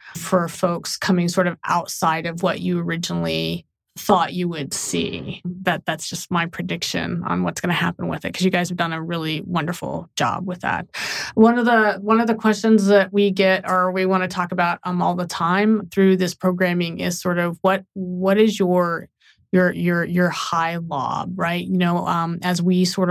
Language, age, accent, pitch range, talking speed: English, 30-49, American, 170-190 Hz, 205 wpm